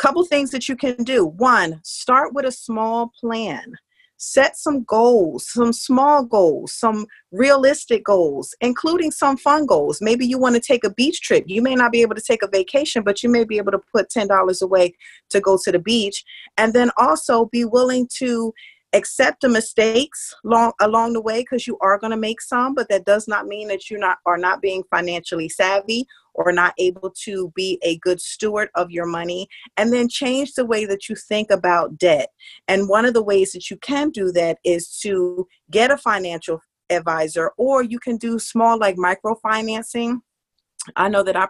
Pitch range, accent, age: 190-245 Hz, American, 40-59